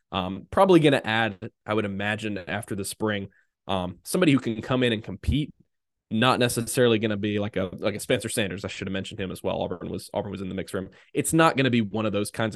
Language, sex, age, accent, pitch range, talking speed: English, male, 20-39, American, 100-125 Hz, 260 wpm